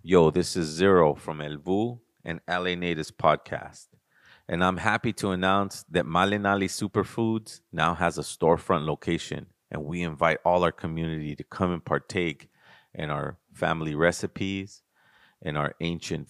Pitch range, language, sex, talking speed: 85-100 Hz, English, male, 145 wpm